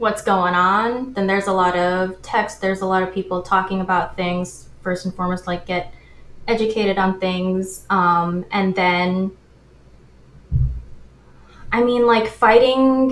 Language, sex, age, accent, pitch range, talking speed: English, female, 20-39, American, 180-205 Hz, 145 wpm